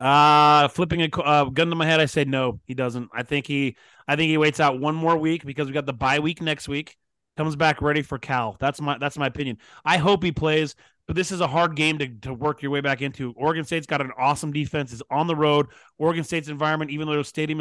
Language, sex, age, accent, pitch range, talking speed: English, male, 30-49, American, 140-180 Hz, 260 wpm